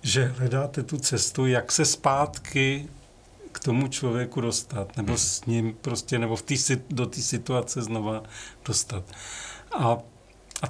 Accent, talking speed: native, 140 wpm